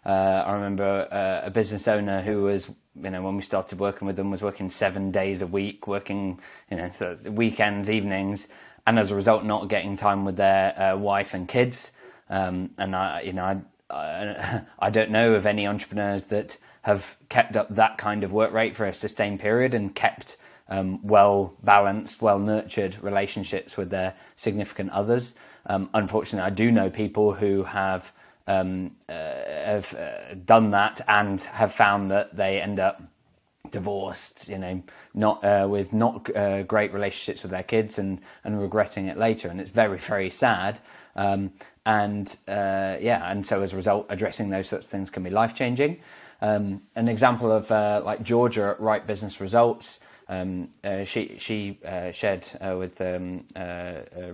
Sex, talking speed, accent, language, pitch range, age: male, 180 wpm, British, English, 95-105 Hz, 20-39